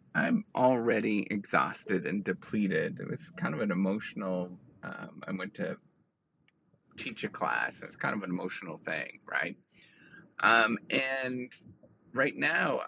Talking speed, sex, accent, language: 140 wpm, male, American, English